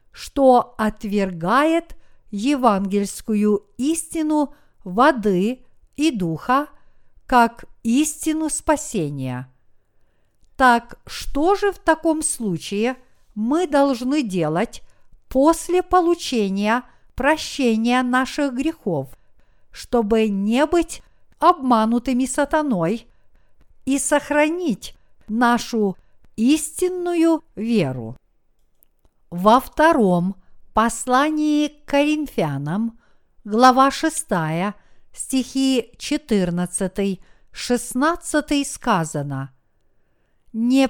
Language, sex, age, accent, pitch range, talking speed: Russian, female, 50-69, native, 195-285 Hz, 65 wpm